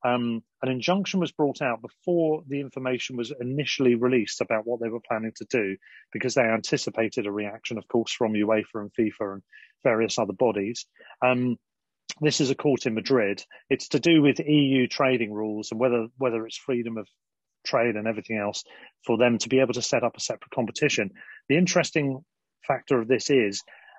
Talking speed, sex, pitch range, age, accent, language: 190 wpm, male, 110-135 Hz, 40-59, British, English